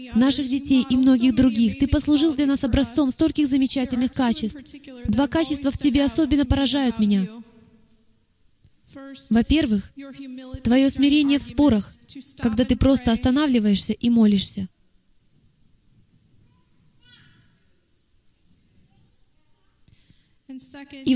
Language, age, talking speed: Russian, 20-39, 90 wpm